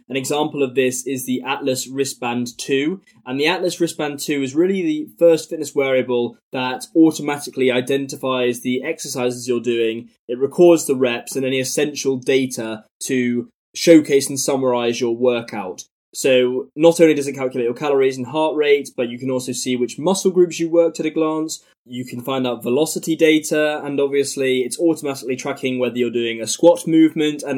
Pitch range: 125-150 Hz